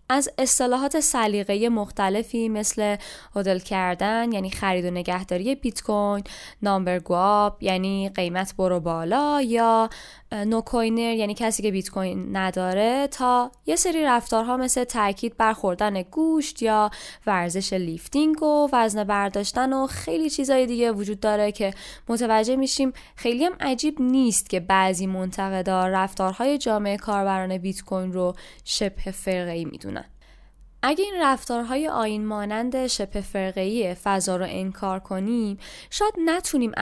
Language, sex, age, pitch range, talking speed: Persian, female, 10-29, 195-250 Hz, 135 wpm